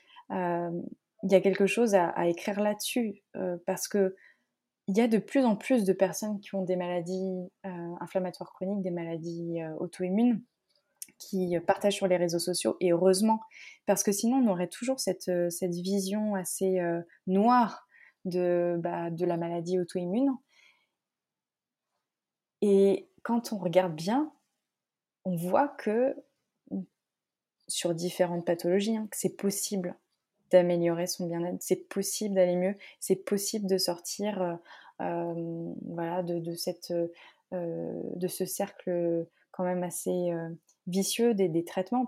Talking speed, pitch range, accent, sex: 140 wpm, 175-205 Hz, French, female